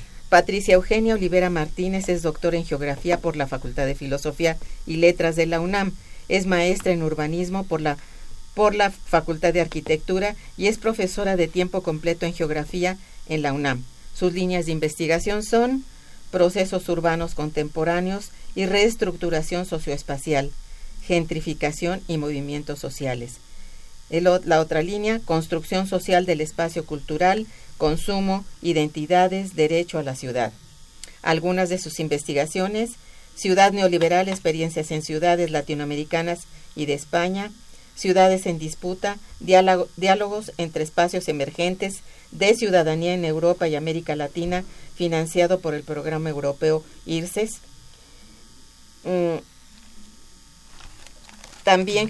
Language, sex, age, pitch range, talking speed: Spanish, female, 50-69, 155-185 Hz, 120 wpm